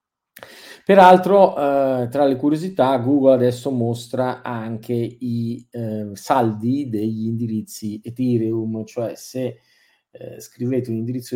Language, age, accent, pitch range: Italian, 40-59, native, 110-140 Hz